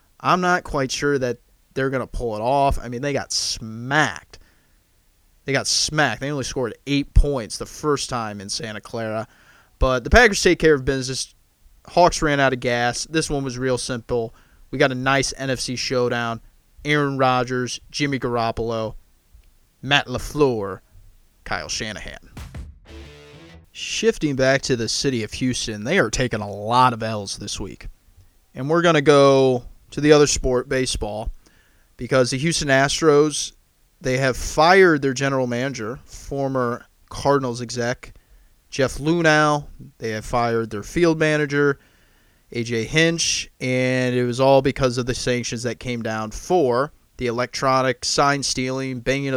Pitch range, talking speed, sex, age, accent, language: 115-145 Hz, 155 wpm, male, 30-49, American, English